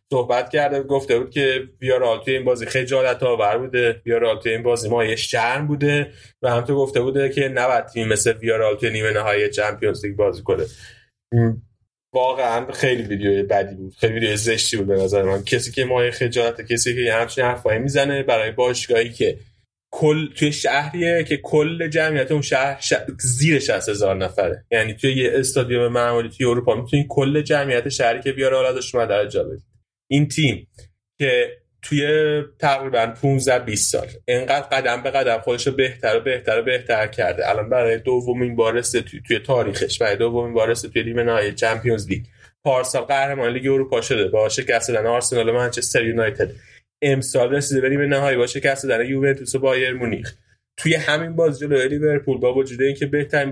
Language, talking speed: Persian, 175 wpm